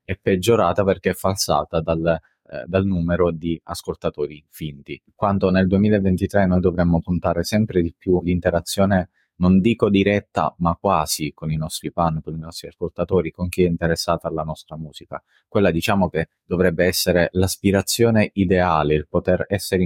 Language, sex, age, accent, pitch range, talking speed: Italian, male, 30-49, native, 85-100 Hz, 155 wpm